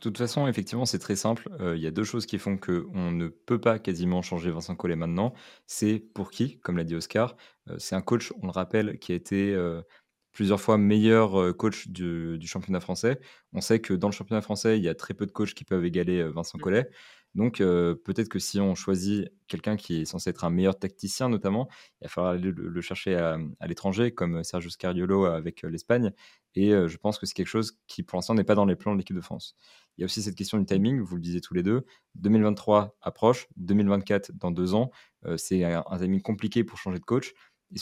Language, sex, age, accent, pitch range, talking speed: French, male, 20-39, French, 90-105 Hz, 235 wpm